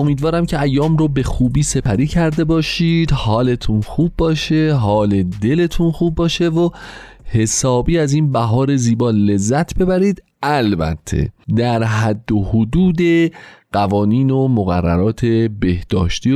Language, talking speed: Persian, 120 wpm